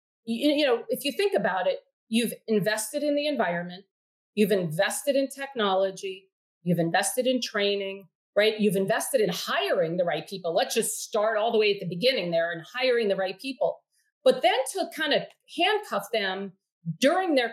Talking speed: 180 wpm